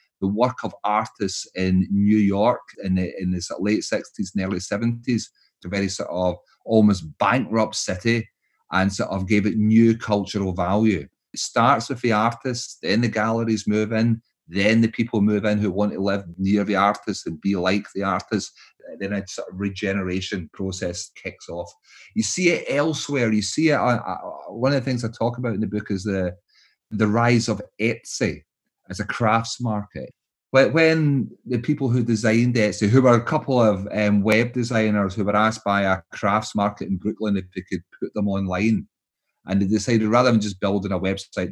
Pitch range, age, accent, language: 100-115 Hz, 30-49, British, English